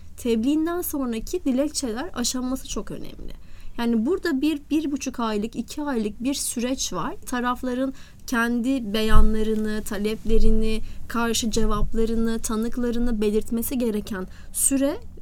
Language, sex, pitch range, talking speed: Turkish, female, 220-275 Hz, 105 wpm